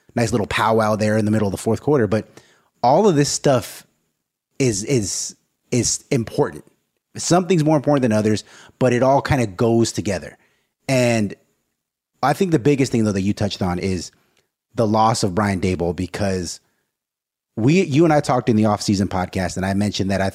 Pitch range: 100-130 Hz